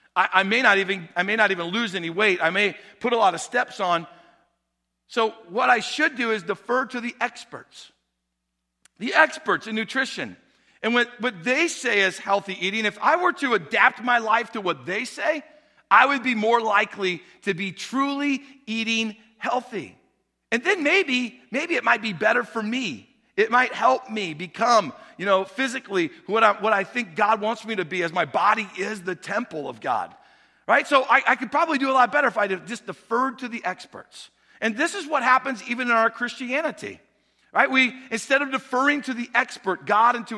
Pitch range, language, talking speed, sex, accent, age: 195-255 Hz, English, 200 wpm, male, American, 50-69